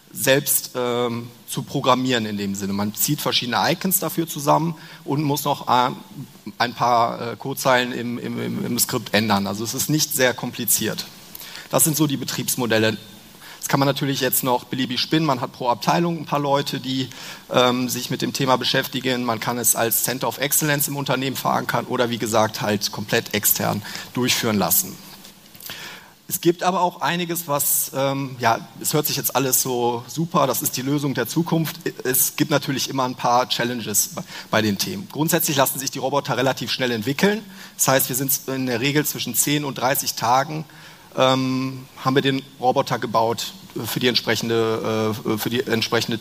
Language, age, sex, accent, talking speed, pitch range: German, 40-59, male, German, 185 wpm, 120-150 Hz